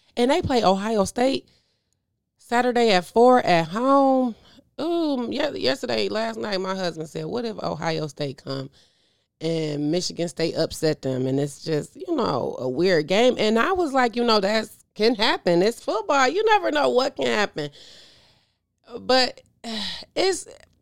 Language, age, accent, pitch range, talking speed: English, 30-49, American, 165-235 Hz, 155 wpm